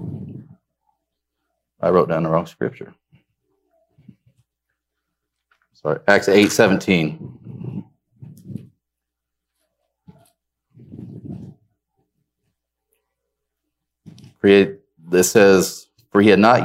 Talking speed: 60 wpm